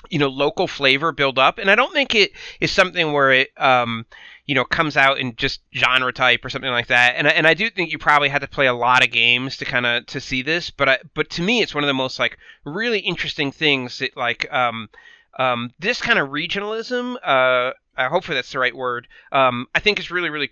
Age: 30-49